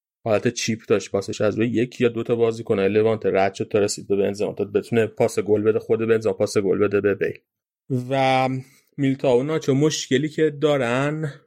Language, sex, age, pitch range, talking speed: Persian, male, 30-49, 110-125 Hz, 195 wpm